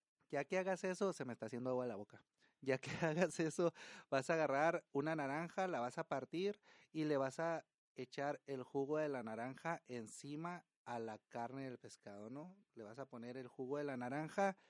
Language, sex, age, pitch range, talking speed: Spanish, male, 30-49, 125-160 Hz, 205 wpm